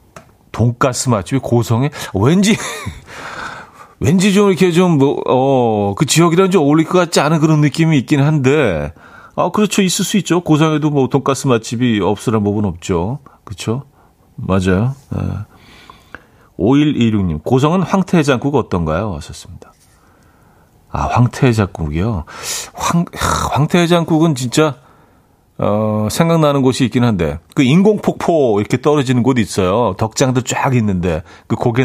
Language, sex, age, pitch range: Korean, male, 40-59, 105-150 Hz